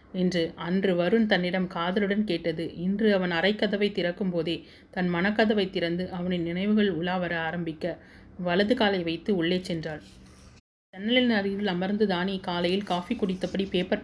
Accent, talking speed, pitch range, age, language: native, 135 wpm, 175-210 Hz, 30-49, Tamil